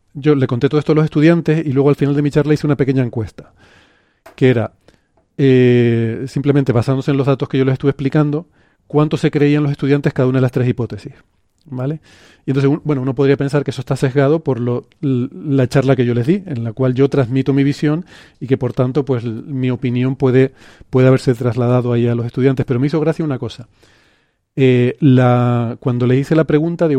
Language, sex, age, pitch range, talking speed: Spanish, male, 40-59, 125-150 Hz, 220 wpm